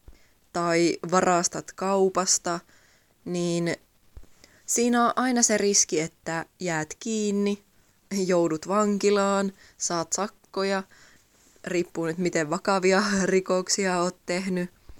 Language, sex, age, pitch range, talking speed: Finnish, female, 20-39, 170-195 Hz, 90 wpm